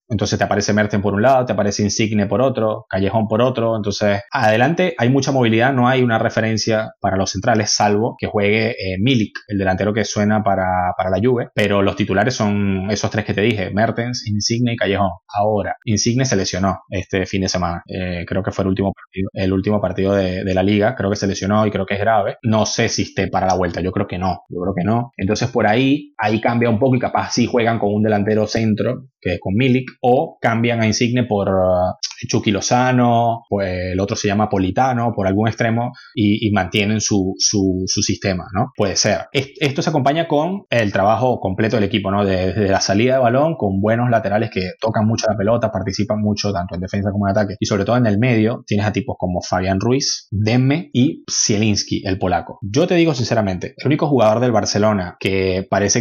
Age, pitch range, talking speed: 20-39, 95-115 Hz, 220 wpm